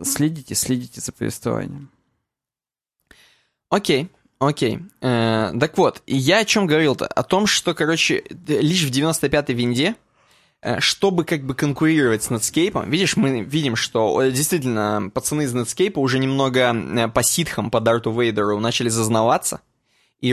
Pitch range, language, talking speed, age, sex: 120-170 Hz, Russian, 140 wpm, 20-39, male